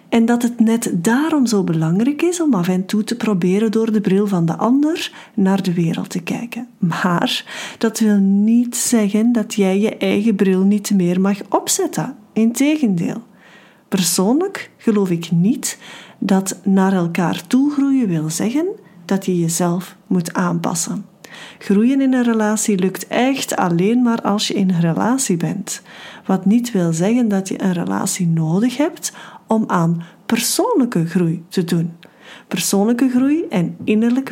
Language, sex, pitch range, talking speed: Dutch, female, 185-240 Hz, 155 wpm